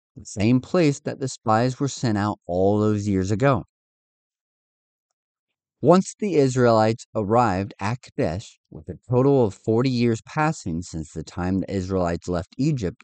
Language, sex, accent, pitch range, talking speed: English, male, American, 95-145 Hz, 150 wpm